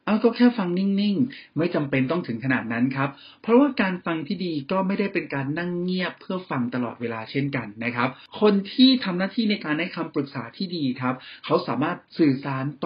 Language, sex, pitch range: Thai, male, 125-175 Hz